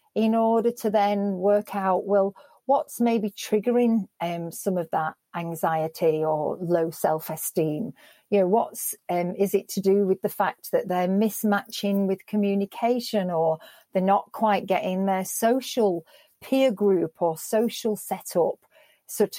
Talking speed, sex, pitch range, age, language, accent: 150 wpm, female, 190-220 Hz, 40-59, English, British